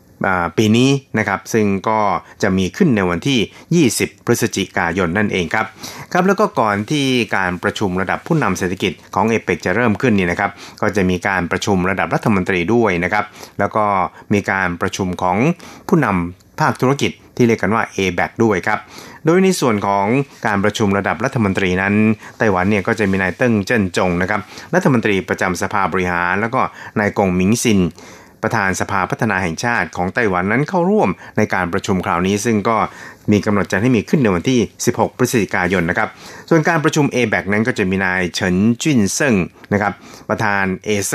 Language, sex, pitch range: Thai, male, 95-115 Hz